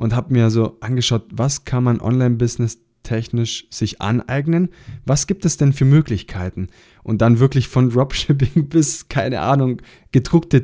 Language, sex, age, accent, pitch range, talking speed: German, male, 20-39, German, 110-135 Hz, 150 wpm